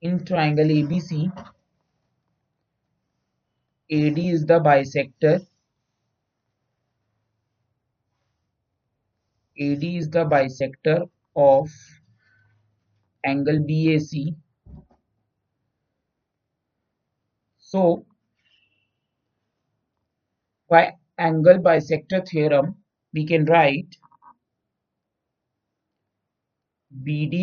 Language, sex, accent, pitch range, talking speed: Hindi, male, native, 120-160 Hz, 50 wpm